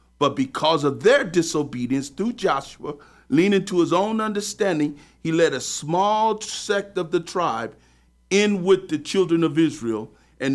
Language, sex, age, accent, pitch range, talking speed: English, male, 50-69, American, 130-195 Hz, 155 wpm